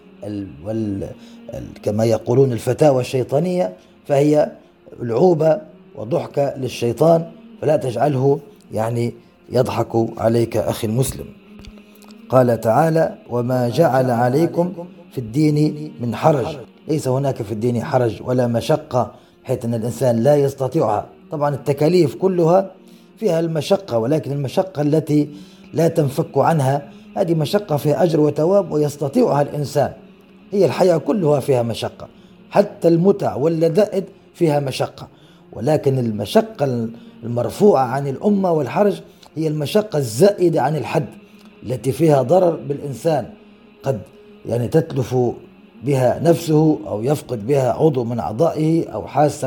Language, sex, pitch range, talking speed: Arabic, male, 125-175 Hz, 115 wpm